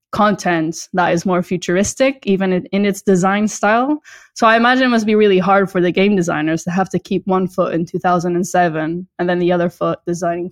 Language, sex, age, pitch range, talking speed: English, female, 10-29, 180-220 Hz, 205 wpm